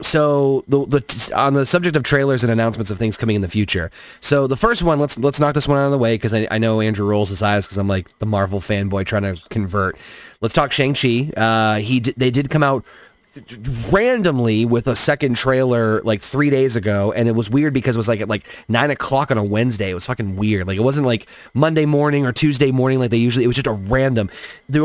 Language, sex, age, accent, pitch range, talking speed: English, male, 30-49, American, 110-140 Hz, 245 wpm